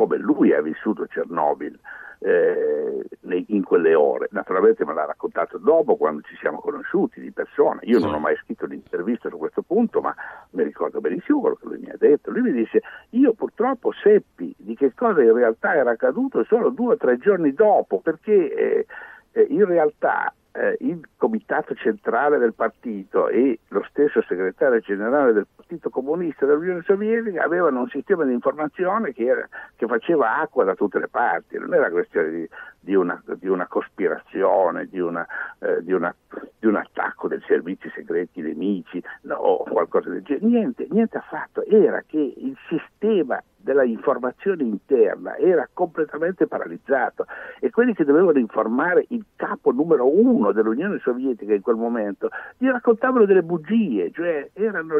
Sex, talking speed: male, 165 wpm